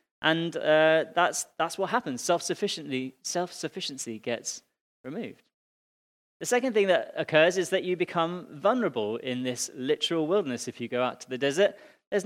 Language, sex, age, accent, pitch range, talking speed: English, male, 30-49, British, 135-180 Hz, 155 wpm